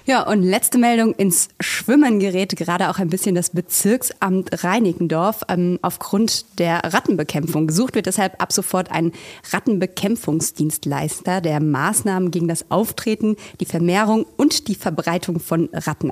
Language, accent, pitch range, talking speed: German, German, 170-210 Hz, 140 wpm